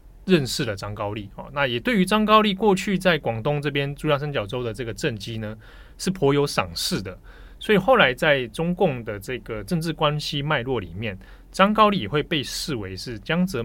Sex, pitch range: male, 110-160 Hz